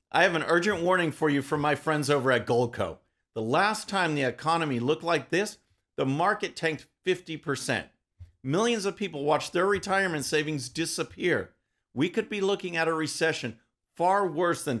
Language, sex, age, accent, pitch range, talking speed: English, male, 50-69, American, 125-180 Hz, 175 wpm